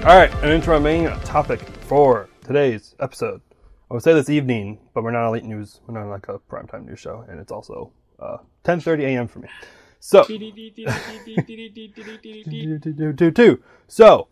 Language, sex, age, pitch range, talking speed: English, male, 20-39, 115-155 Hz, 145 wpm